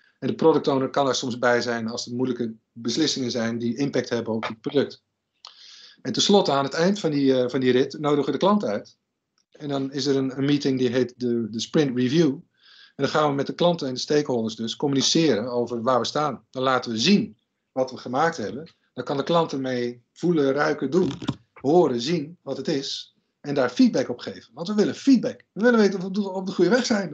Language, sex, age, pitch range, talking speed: Dutch, male, 50-69, 125-165 Hz, 230 wpm